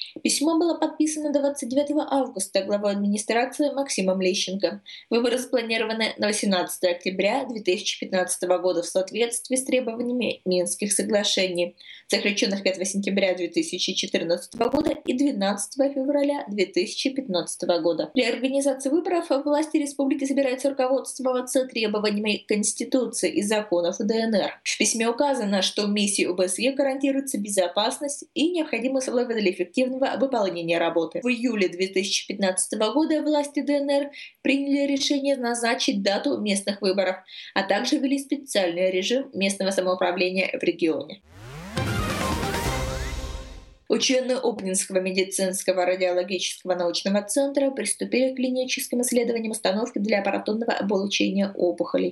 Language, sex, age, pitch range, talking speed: Russian, female, 20-39, 185-265 Hz, 110 wpm